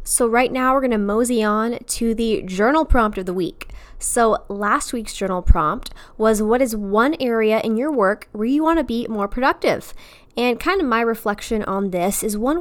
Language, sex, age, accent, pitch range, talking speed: English, female, 10-29, American, 195-230 Hz, 200 wpm